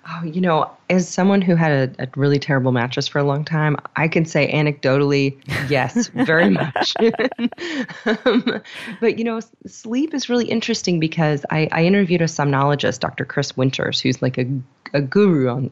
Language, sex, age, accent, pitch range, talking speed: English, female, 30-49, American, 140-190 Hz, 175 wpm